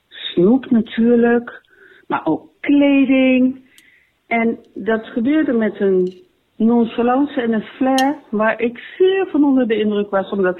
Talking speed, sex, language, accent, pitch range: 130 wpm, female, Dutch, Dutch, 185-280 Hz